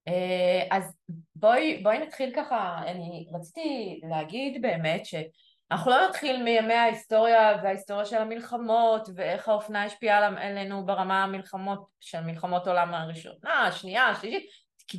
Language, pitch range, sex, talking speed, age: Hebrew, 170-210 Hz, female, 120 wpm, 20-39